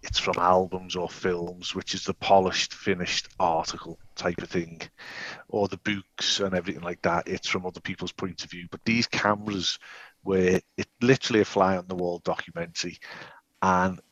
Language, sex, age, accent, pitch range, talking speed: English, male, 40-59, British, 90-120 Hz, 170 wpm